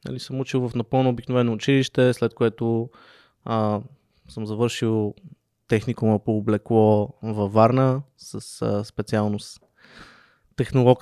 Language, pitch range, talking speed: Bulgarian, 110-135 Hz, 115 wpm